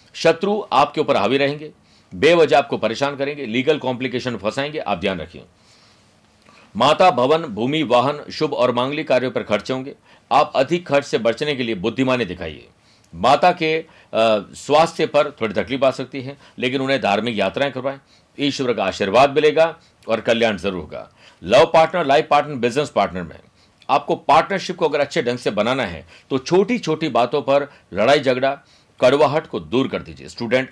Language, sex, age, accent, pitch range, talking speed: Hindi, male, 50-69, native, 115-145 Hz, 165 wpm